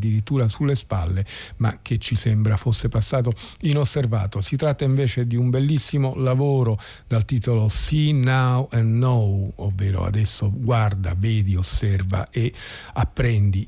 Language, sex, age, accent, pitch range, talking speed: Italian, male, 50-69, native, 105-130 Hz, 130 wpm